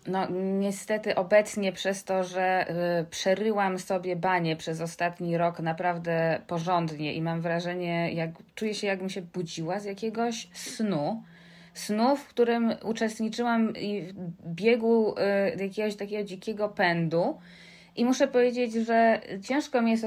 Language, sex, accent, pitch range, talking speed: Polish, female, native, 170-210 Hz, 140 wpm